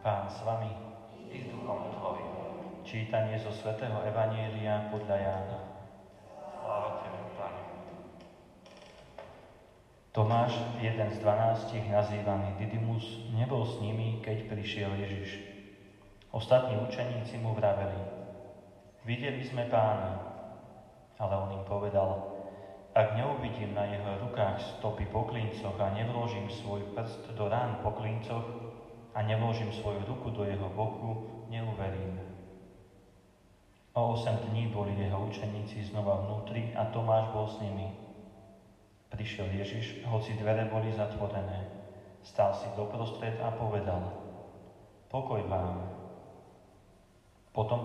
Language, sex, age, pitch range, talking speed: Slovak, male, 30-49, 100-115 Hz, 105 wpm